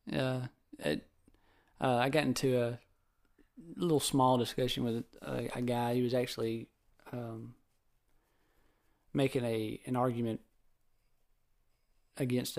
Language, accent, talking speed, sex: English, American, 110 wpm, male